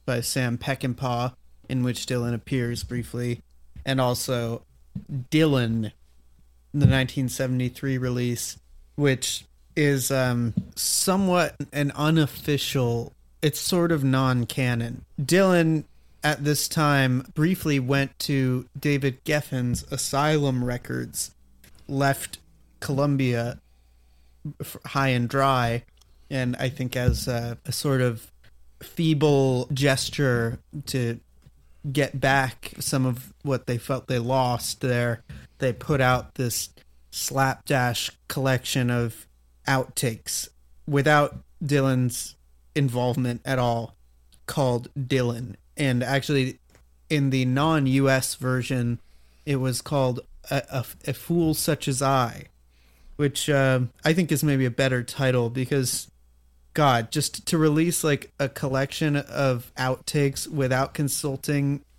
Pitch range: 120-140 Hz